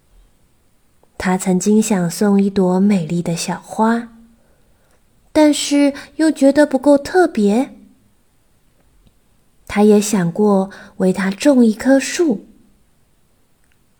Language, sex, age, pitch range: Chinese, female, 20-39, 195-255 Hz